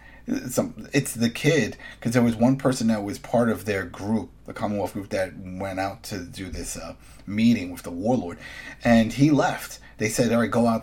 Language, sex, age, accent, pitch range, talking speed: English, male, 30-49, American, 105-130 Hz, 205 wpm